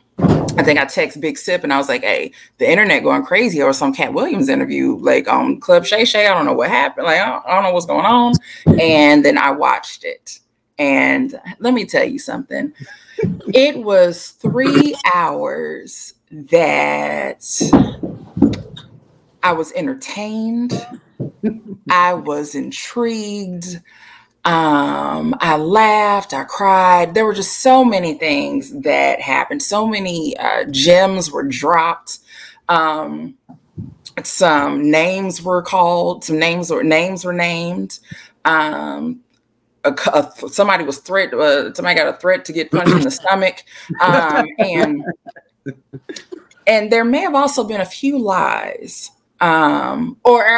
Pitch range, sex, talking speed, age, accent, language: 160-250 Hz, female, 140 wpm, 20-39, American, English